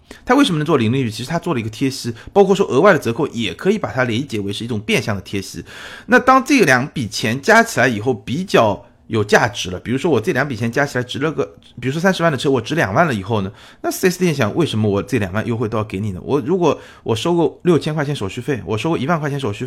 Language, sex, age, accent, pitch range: Chinese, male, 30-49, native, 105-145 Hz